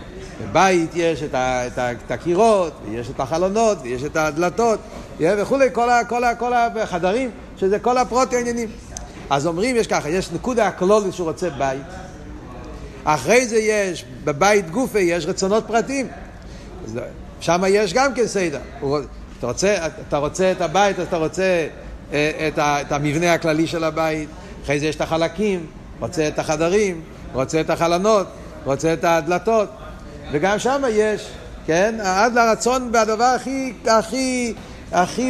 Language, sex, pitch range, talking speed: Hebrew, male, 165-230 Hz, 145 wpm